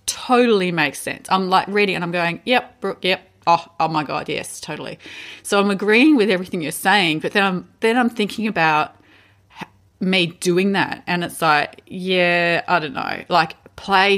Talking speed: 185 wpm